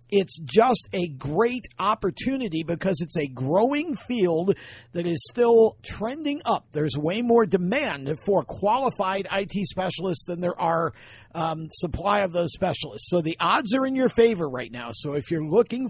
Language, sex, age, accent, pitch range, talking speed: English, male, 50-69, American, 160-235 Hz, 165 wpm